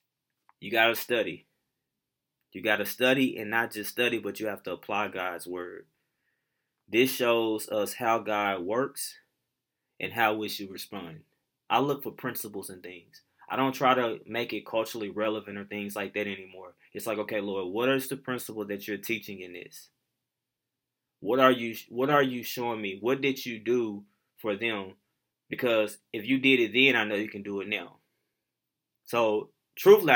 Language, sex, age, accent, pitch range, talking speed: English, male, 20-39, American, 105-130 Hz, 175 wpm